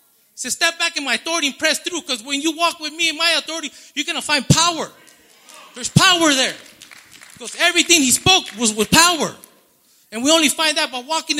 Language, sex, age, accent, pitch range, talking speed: English, male, 30-49, American, 230-315 Hz, 210 wpm